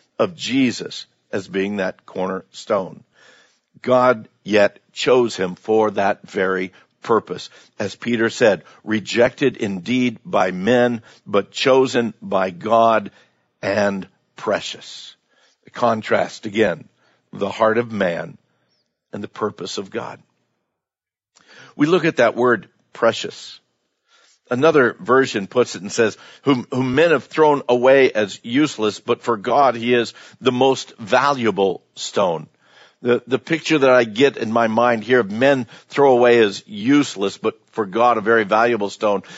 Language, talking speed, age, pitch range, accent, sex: English, 135 wpm, 50-69, 110-135 Hz, American, male